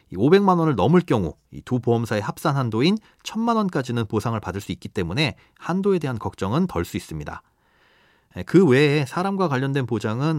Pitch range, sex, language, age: 105-160 Hz, male, Korean, 40-59